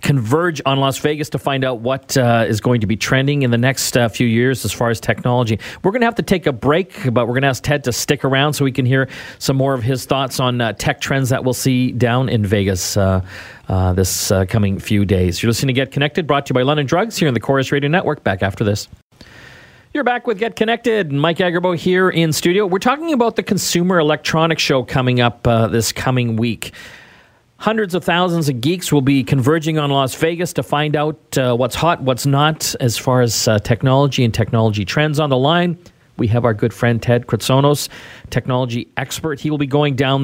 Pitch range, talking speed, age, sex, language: 120-150 Hz, 230 wpm, 40-59, male, English